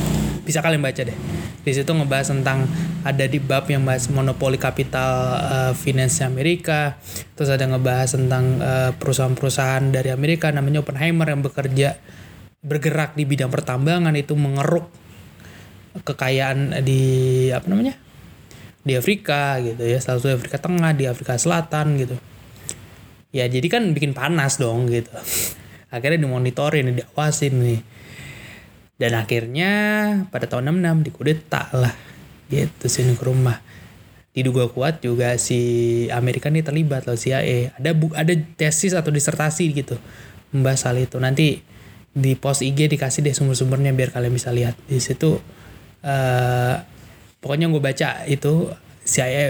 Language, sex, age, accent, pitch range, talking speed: Indonesian, male, 20-39, native, 125-150 Hz, 135 wpm